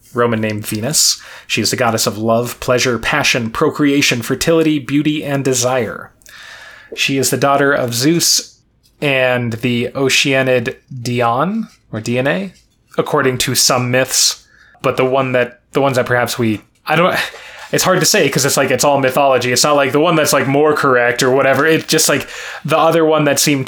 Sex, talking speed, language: male, 180 wpm, English